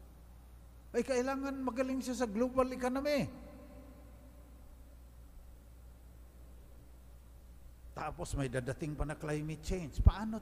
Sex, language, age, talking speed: male, English, 50-69, 85 wpm